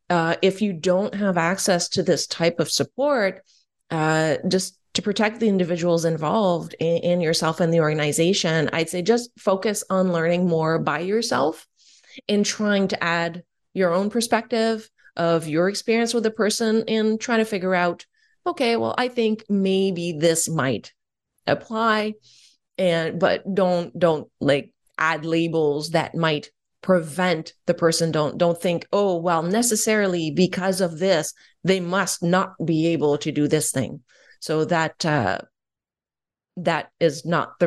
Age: 30-49